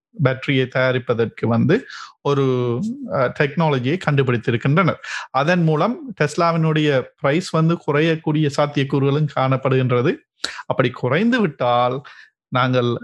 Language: Tamil